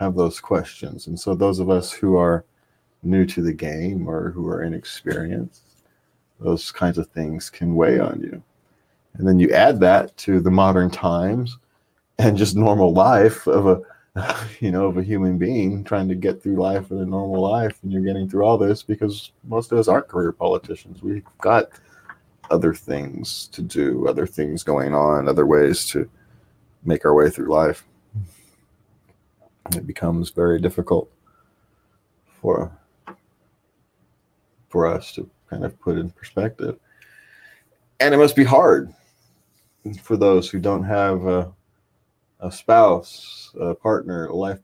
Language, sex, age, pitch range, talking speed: English, male, 30-49, 85-100 Hz, 160 wpm